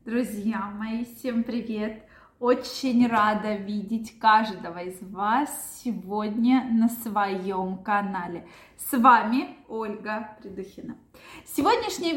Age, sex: 20-39, female